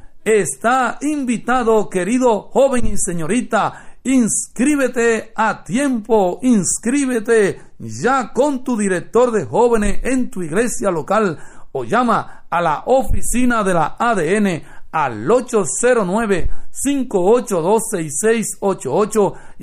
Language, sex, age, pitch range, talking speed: English, male, 60-79, 205-250 Hz, 90 wpm